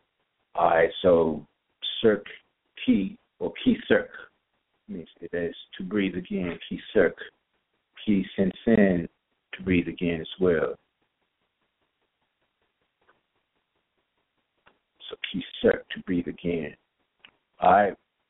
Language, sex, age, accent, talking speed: English, male, 50-69, American, 100 wpm